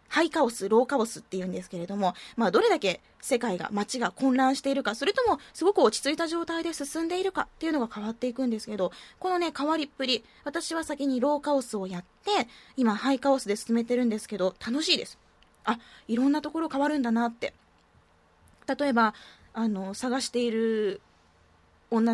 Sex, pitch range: female, 210-305 Hz